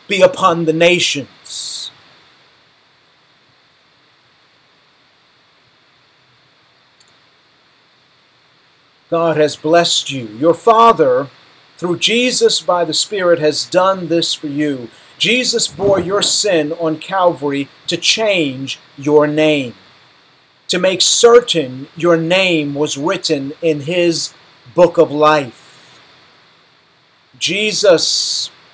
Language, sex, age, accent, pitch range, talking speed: English, male, 50-69, American, 150-185 Hz, 90 wpm